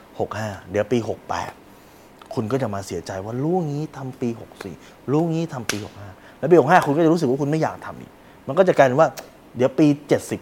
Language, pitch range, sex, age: Thai, 110-160 Hz, male, 20-39